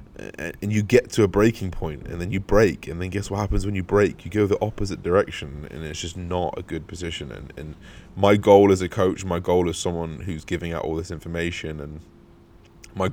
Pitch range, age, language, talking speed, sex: 80-100 Hz, 20-39, English, 230 wpm, male